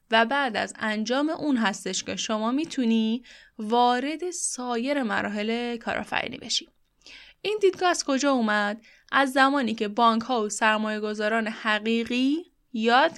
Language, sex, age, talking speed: Persian, female, 10-29, 130 wpm